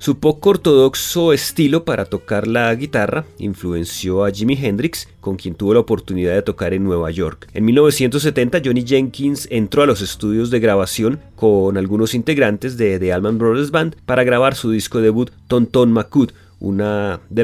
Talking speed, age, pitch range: 170 wpm, 30-49, 95-135 Hz